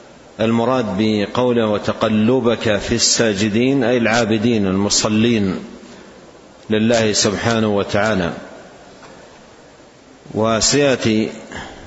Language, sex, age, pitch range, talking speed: Arabic, male, 50-69, 110-125 Hz, 60 wpm